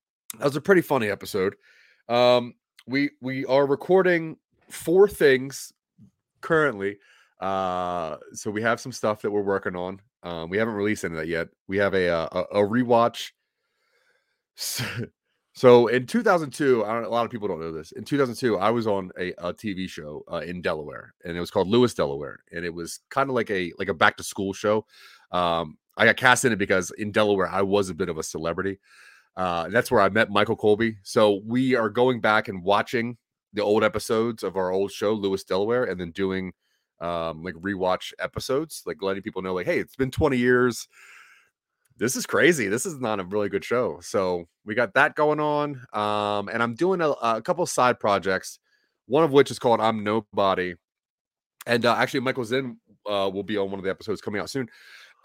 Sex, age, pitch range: male, 30-49, 95-125 Hz